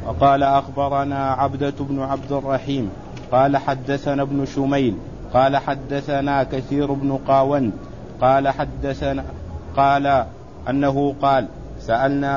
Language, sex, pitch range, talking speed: Arabic, male, 135-140 Hz, 100 wpm